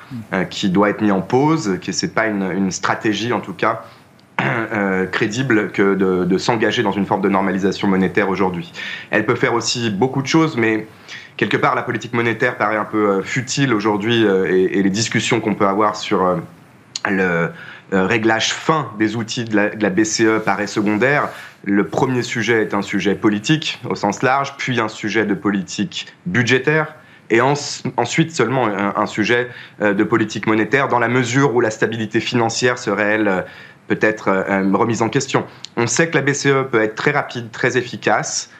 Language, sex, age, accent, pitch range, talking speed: French, male, 30-49, French, 100-120 Hz, 180 wpm